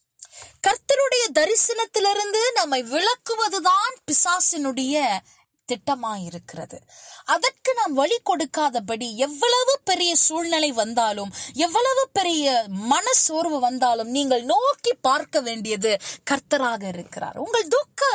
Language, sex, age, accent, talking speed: Tamil, female, 20-39, native, 55 wpm